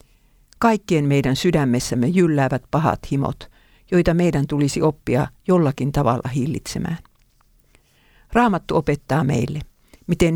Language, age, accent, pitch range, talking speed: Finnish, 50-69, native, 140-175 Hz, 100 wpm